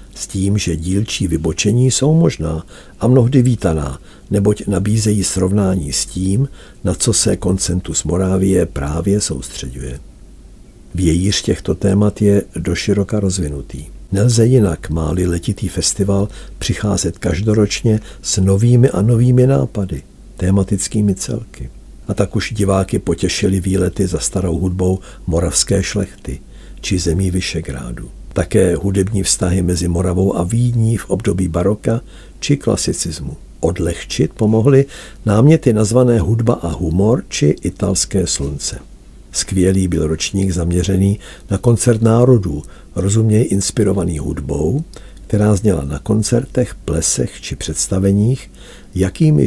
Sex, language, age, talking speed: male, Czech, 60-79, 120 wpm